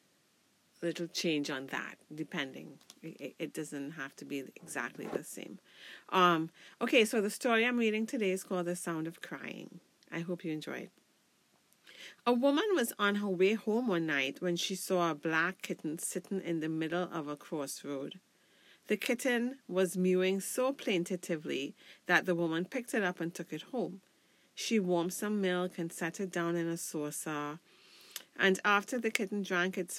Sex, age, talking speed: female, 40-59, 175 wpm